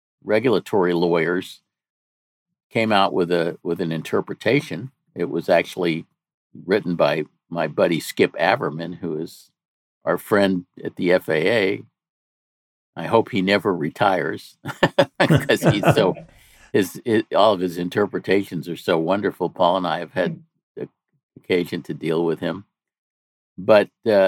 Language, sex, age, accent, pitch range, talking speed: English, male, 50-69, American, 85-105 Hz, 135 wpm